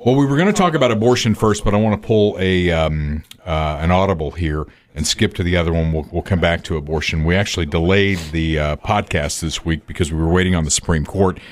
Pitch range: 80-105 Hz